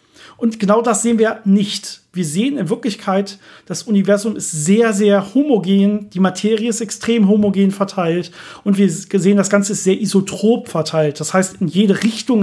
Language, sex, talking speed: German, male, 175 wpm